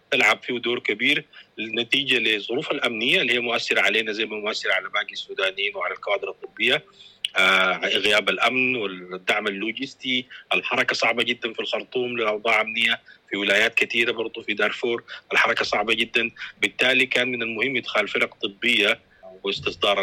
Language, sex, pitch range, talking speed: English, male, 110-140 Hz, 145 wpm